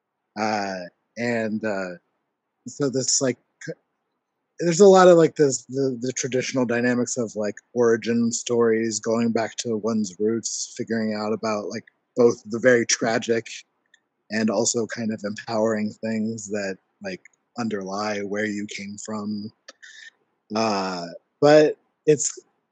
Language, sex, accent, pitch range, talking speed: English, male, American, 115-135 Hz, 130 wpm